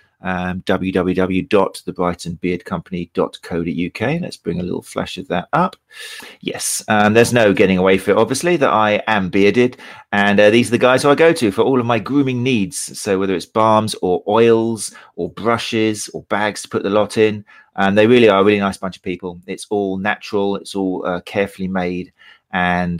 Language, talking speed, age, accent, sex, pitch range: English, 195 wpm, 30-49, British, male, 95-125 Hz